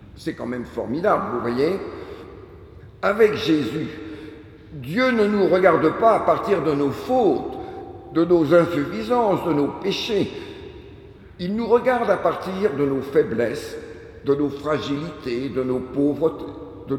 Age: 60-79